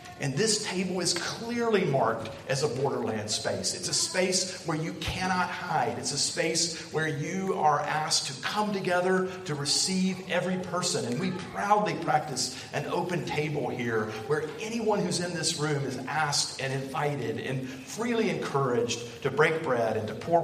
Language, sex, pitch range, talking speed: English, male, 140-185 Hz, 170 wpm